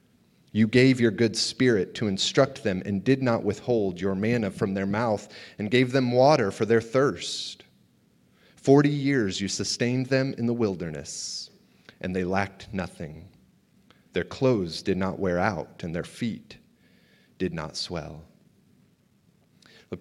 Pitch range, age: 100-125 Hz, 30-49